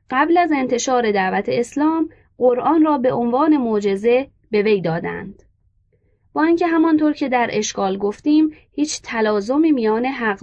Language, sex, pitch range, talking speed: Persian, female, 205-285 Hz, 140 wpm